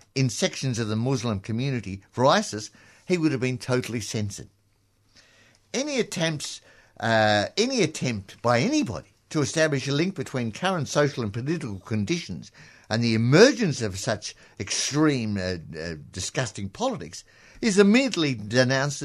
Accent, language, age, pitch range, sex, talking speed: British, English, 60-79, 110-155 Hz, male, 140 wpm